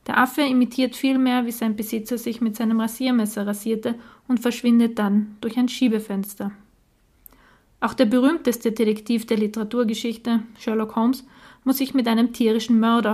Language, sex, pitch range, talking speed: German, female, 215-245 Hz, 145 wpm